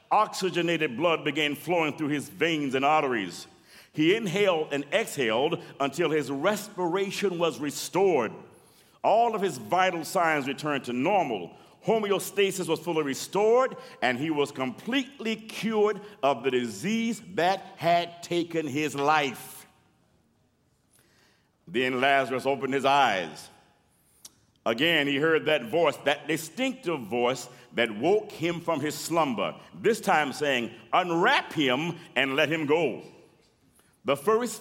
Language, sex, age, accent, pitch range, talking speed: English, male, 50-69, American, 140-190 Hz, 125 wpm